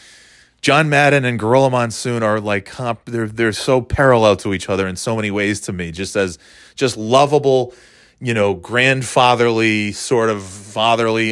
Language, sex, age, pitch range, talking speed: English, male, 30-49, 95-125 Hz, 175 wpm